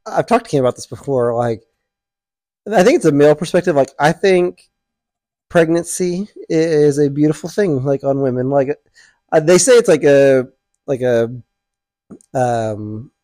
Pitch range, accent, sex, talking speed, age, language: 125-155 Hz, American, male, 155 wpm, 30-49, English